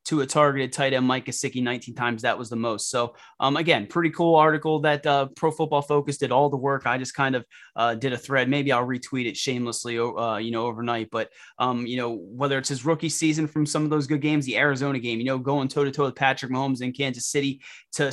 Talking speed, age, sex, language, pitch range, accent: 245 wpm, 20-39, male, English, 125-145 Hz, American